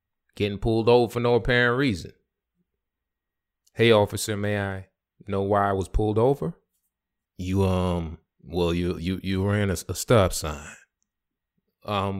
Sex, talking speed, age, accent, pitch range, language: male, 145 wpm, 20-39, American, 95-115 Hz, English